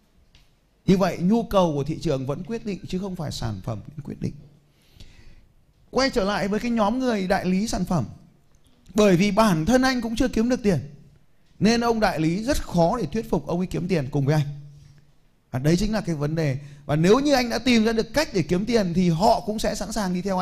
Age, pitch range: 20-39, 175-245 Hz